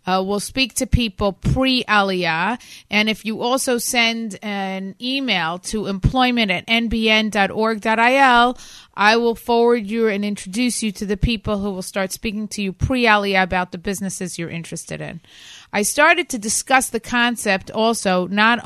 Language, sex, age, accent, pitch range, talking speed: English, female, 30-49, American, 190-235 Hz, 160 wpm